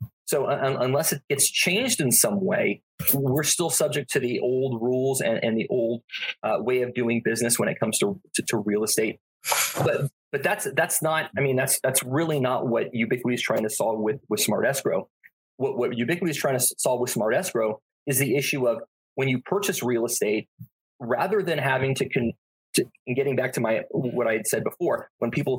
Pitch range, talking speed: 120-155 Hz, 210 wpm